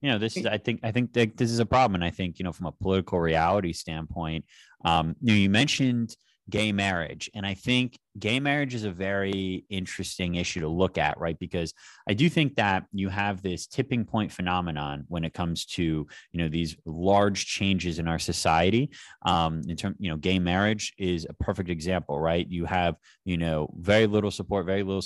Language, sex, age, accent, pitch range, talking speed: English, male, 30-49, American, 85-105 Hz, 210 wpm